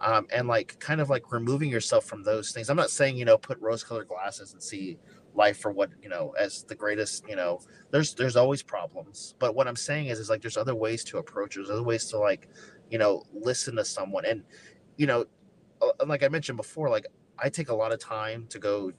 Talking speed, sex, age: 235 wpm, male, 30-49